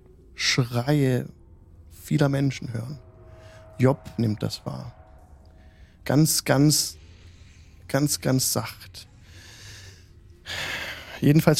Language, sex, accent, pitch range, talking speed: German, male, German, 95-140 Hz, 70 wpm